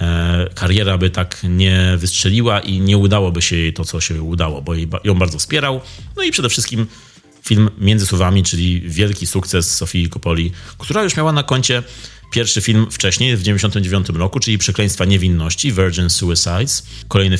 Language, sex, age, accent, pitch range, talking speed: Polish, male, 30-49, native, 90-110 Hz, 160 wpm